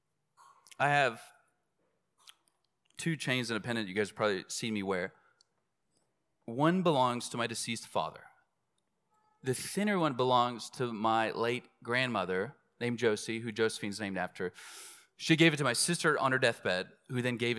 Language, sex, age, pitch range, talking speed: English, male, 30-49, 115-165 Hz, 160 wpm